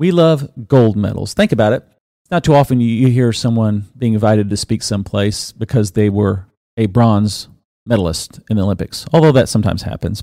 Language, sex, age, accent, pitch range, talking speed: English, male, 40-59, American, 100-130 Hz, 180 wpm